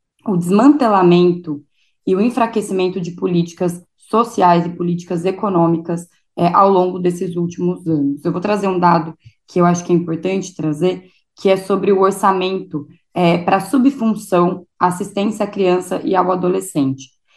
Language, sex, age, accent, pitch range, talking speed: Portuguese, female, 20-39, Brazilian, 175-215 Hz, 150 wpm